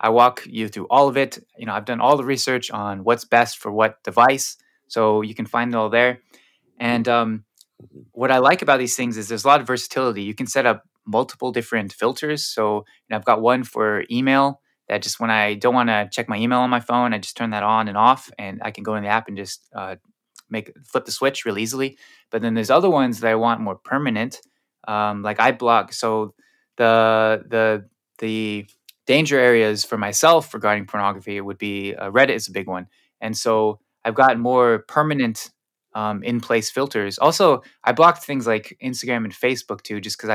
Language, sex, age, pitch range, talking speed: English, male, 20-39, 105-125 Hz, 215 wpm